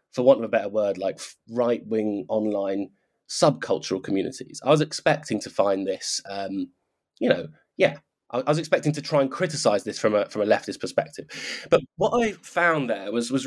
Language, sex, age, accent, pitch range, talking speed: English, male, 20-39, British, 105-155 Hz, 190 wpm